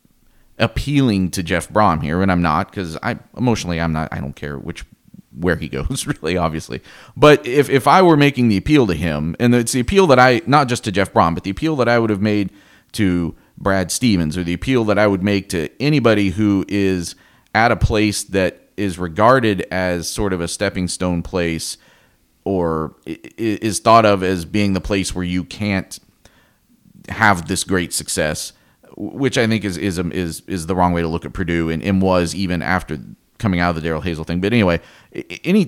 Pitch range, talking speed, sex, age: 90-120 Hz, 205 wpm, male, 40-59